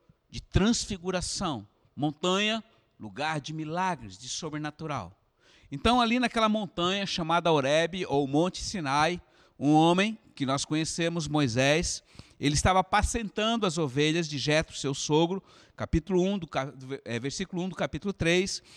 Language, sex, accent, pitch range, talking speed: Portuguese, male, Brazilian, 170-245 Hz, 130 wpm